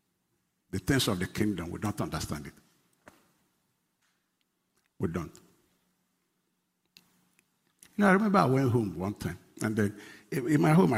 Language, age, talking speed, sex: English, 60-79, 140 wpm, male